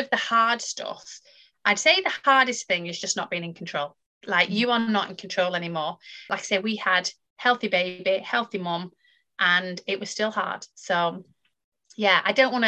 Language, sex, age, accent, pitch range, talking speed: English, female, 30-49, British, 185-225 Hz, 190 wpm